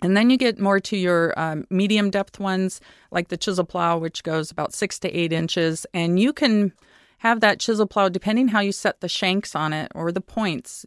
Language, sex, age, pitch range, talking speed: English, female, 40-59, 165-200 Hz, 220 wpm